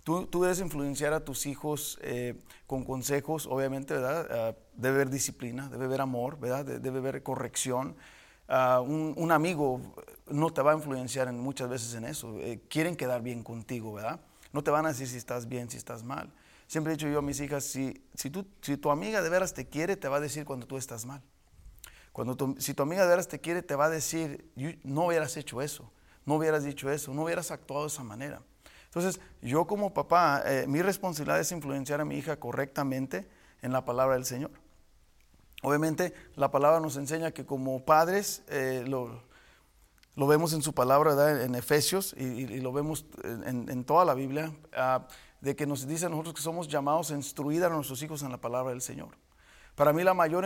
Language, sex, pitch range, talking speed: English, male, 130-155 Hz, 210 wpm